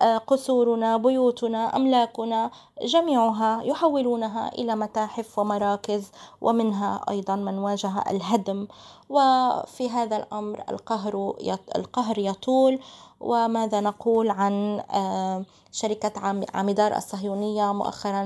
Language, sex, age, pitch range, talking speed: Arabic, female, 20-39, 200-245 Hz, 85 wpm